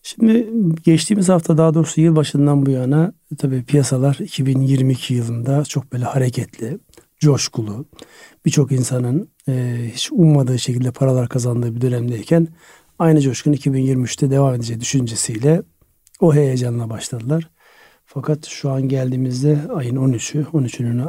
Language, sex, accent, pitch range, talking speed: Turkish, male, native, 130-150 Hz, 120 wpm